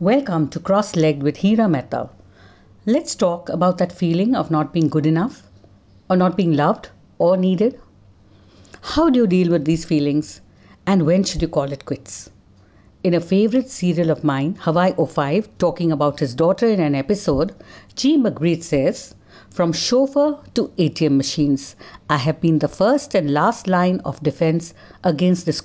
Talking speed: 165 wpm